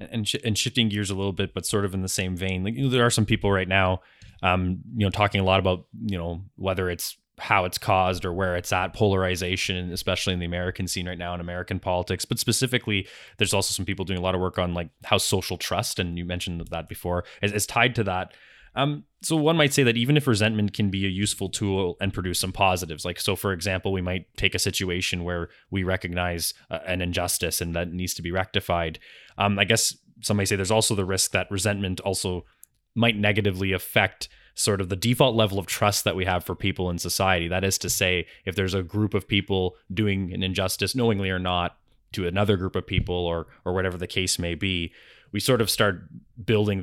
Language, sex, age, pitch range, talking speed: English, male, 20-39, 90-105 Hz, 230 wpm